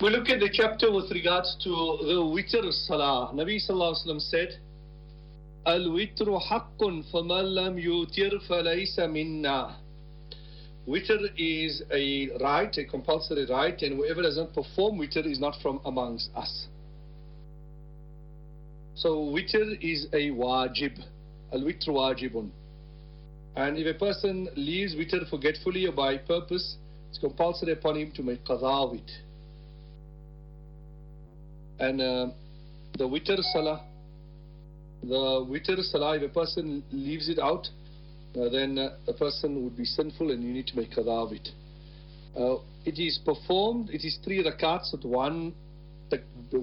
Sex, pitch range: male, 150-165 Hz